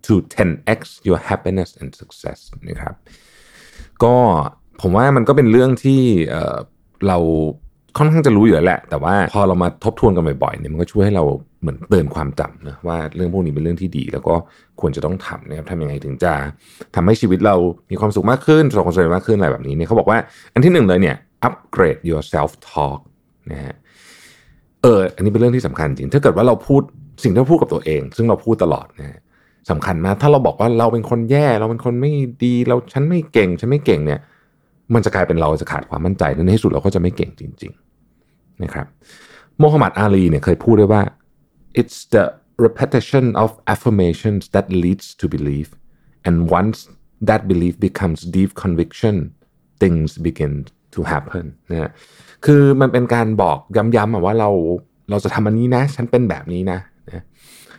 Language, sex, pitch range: Thai, male, 85-120 Hz